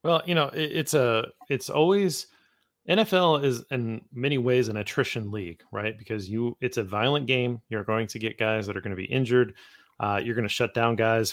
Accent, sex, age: American, male, 30-49